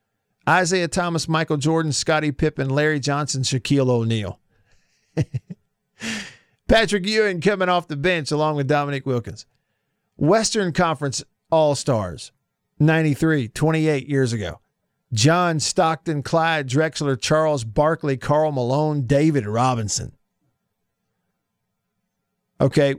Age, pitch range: 50-69, 135-180 Hz